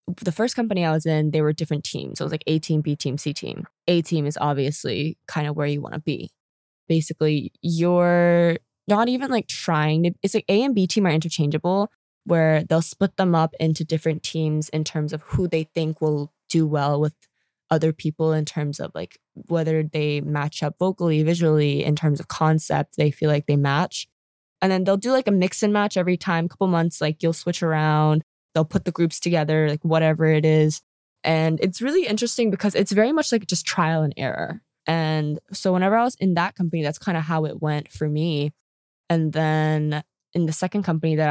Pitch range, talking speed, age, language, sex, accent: 150-175 Hz, 215 wpm, 20-39, English, female, American